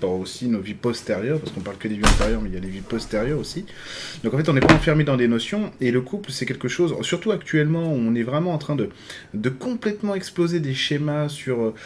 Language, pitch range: French, 115-145 Hz